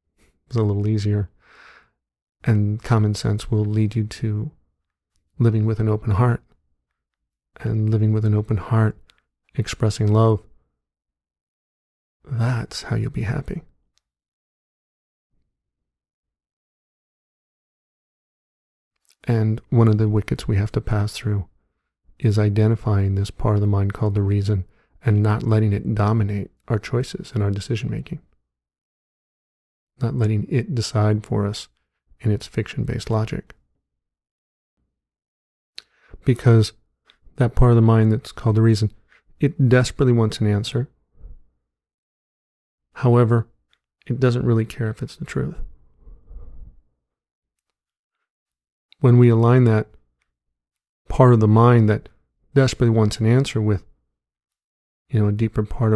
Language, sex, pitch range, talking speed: English, male, 70-115 Hz, 120 wpm